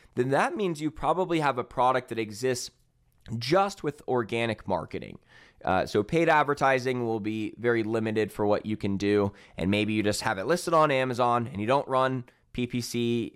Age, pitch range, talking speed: 20-39, 105-135 Hz, 185 wpm